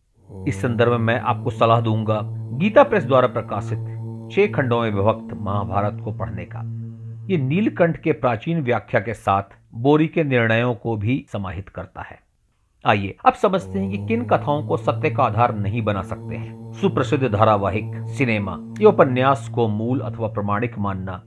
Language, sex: Hindi, male